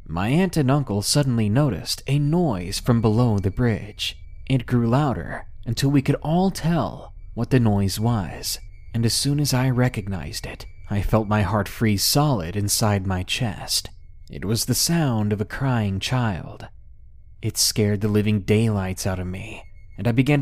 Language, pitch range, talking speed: English, 95-135 Hz, 175 wpm